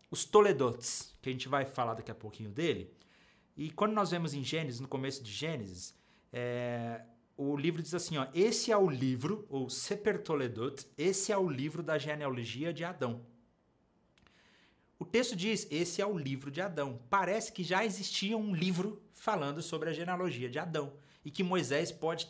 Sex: male